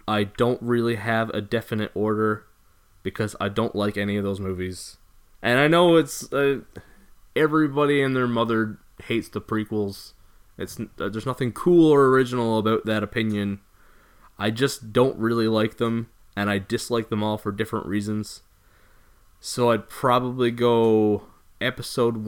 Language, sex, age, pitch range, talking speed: English, male, 20-39, 95-120 Hz, 150 wpm